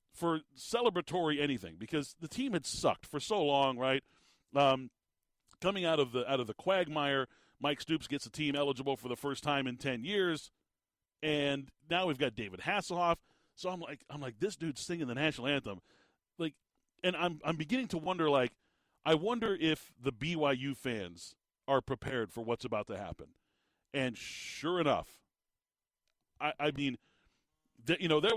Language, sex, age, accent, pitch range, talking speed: English, male, 40-59, American, 130-180 Hz, 170 wpm